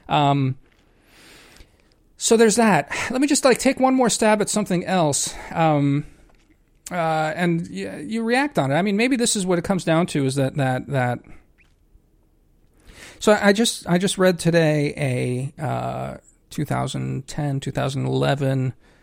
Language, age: English, 40-59